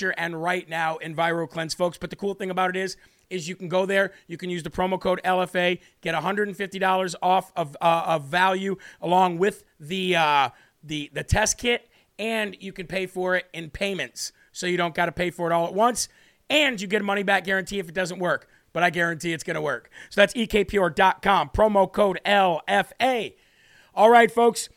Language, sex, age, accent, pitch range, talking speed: English, male, 40-59, American, 180-200 Hz, 205 wpm